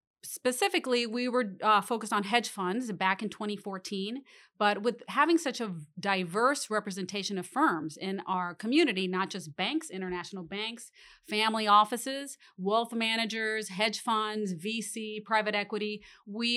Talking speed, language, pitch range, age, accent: 140 wpm, English, 185-220 Hz, 30-49, American